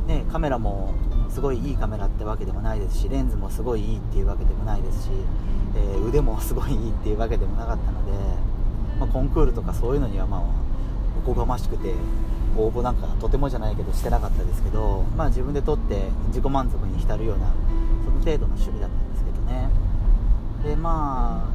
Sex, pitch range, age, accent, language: male, 100-125 Hz, 40-59, native, Japanese